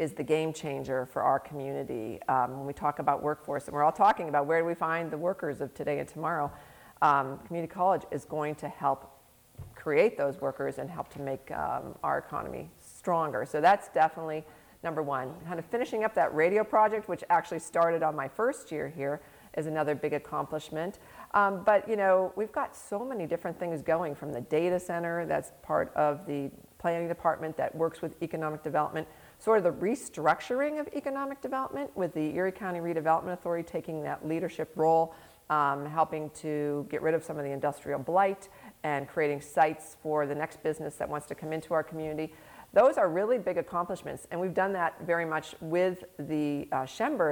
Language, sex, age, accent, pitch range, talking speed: English, female, 40-59, American, 150-175 Hz, 195 wpm